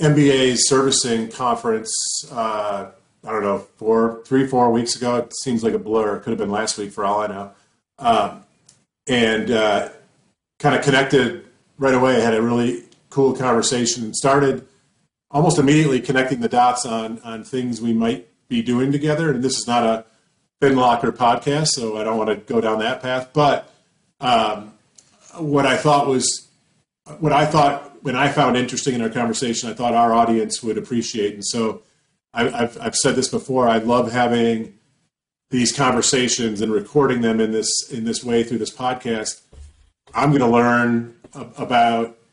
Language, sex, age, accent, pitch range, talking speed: English, male, 40-59, American, 115-130 Hz, 175 wpm